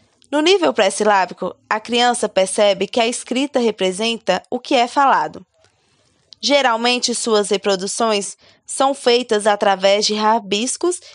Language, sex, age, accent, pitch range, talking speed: Portuguese, female, 20-39, Brazilian, 200-255 Hz, 120 wpm